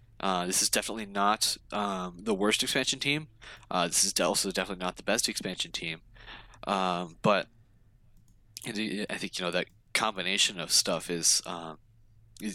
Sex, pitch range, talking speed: male, 95-115 Hz, 155 wpm